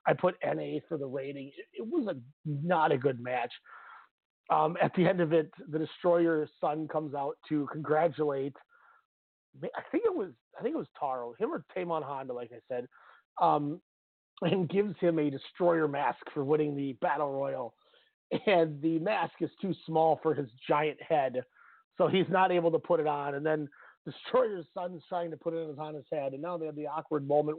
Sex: male